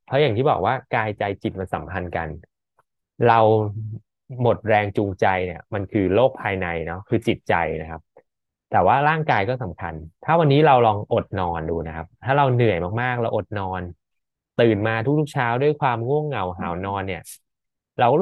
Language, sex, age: Thai, male, 20-39